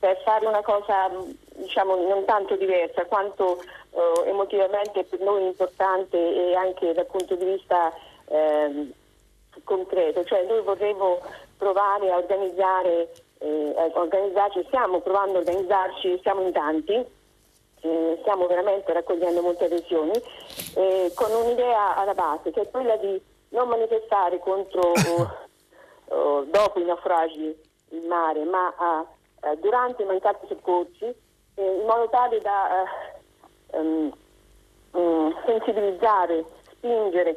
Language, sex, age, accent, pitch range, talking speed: Italian, female, 30-49, native, 175-205 Hz, 125 wpm